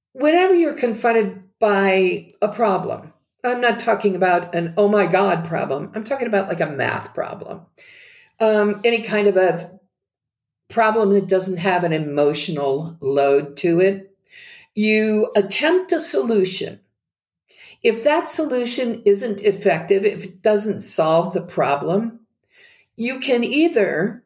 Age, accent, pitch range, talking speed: 50-69, American, 185-240 Hz, 135 wpm